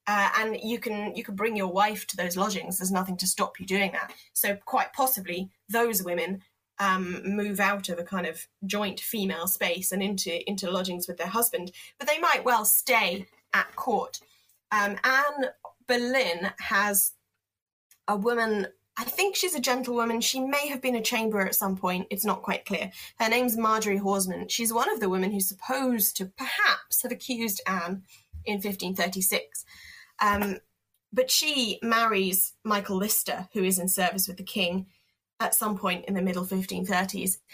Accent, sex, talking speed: British, female, 175 wpm